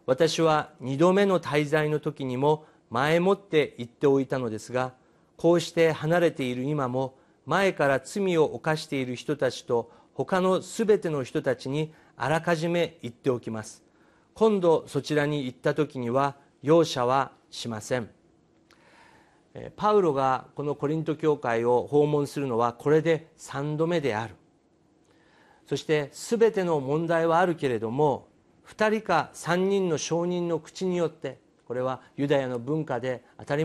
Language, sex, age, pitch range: Japanese, male, 50-69, 135-170 Hz